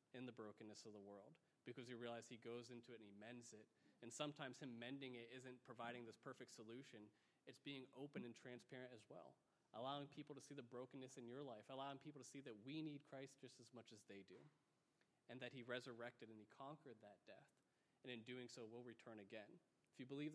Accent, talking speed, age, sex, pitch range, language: American, 225 wpm, 30-49, male, 115-135 Hz, English